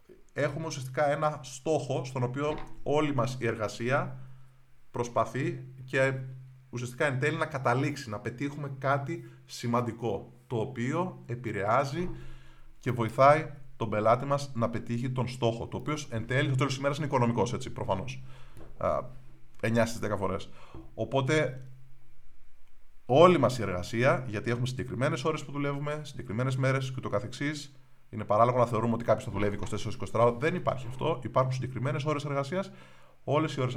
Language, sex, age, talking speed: Greek, male, 30-49, 140 wpm